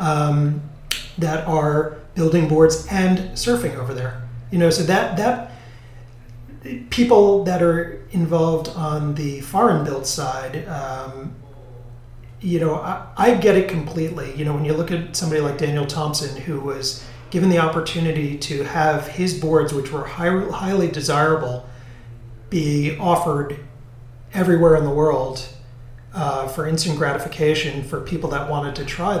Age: 30-49